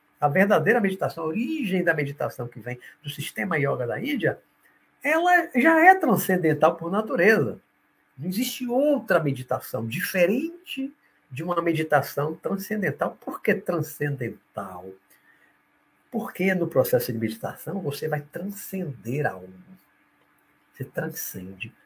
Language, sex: Portuguese, male